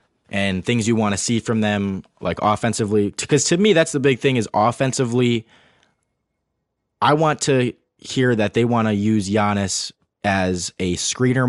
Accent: American